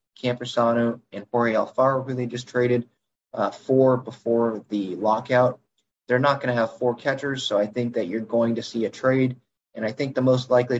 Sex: male